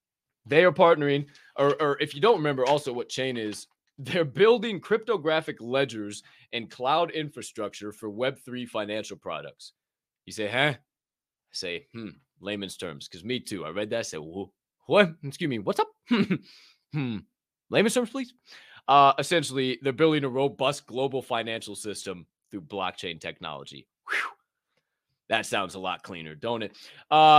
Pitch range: 110-160 Hz